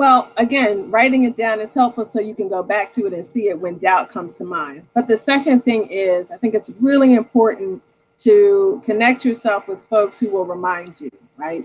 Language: English